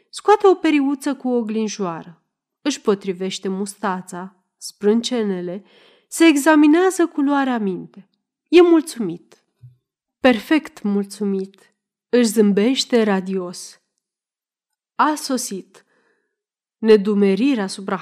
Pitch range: 200-275 Hz